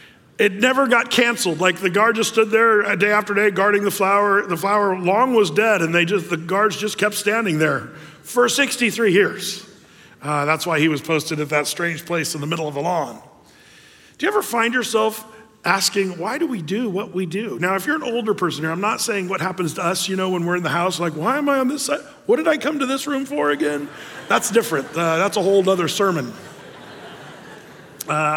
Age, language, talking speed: 40-59, English, 230 wpm